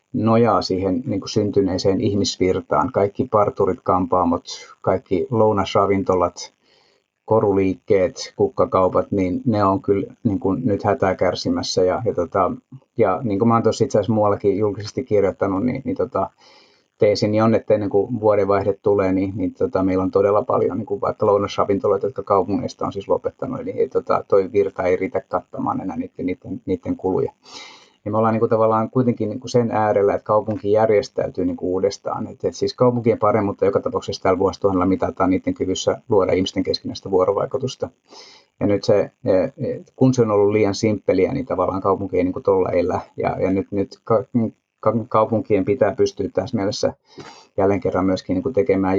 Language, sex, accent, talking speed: Finnish, male, native, 160 wpm